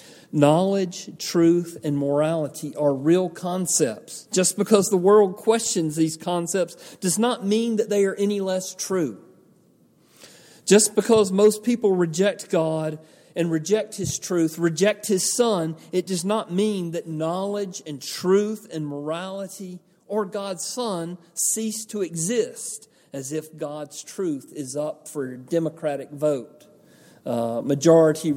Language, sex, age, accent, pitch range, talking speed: English, male, 40-59, American, 155-205 Hz, 135 wpm